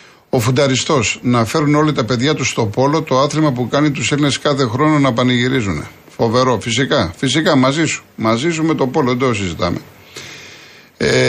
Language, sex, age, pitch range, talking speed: Greek, male, 50-69, 120-155 Hz, 180 wpm